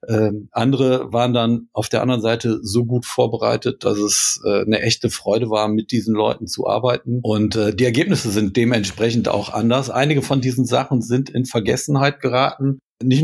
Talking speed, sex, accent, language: 180 wpm, male, German, German